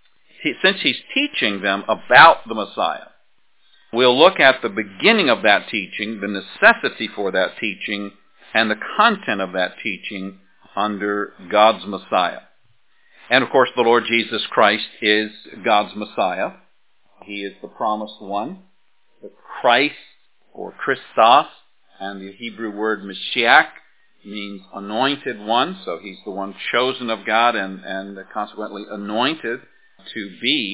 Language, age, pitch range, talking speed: English, 50-69, 100-120 Hz, 135 wpm